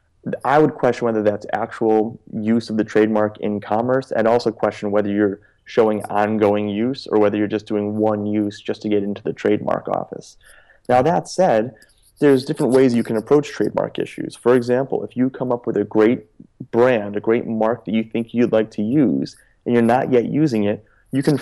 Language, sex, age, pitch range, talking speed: English, male, 30-49, 105-120 Hz, 205 wpm